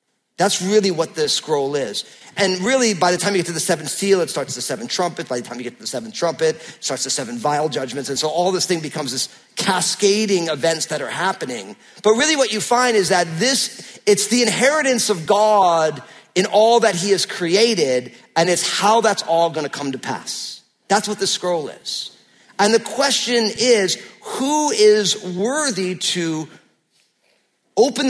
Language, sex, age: English, male, 40-59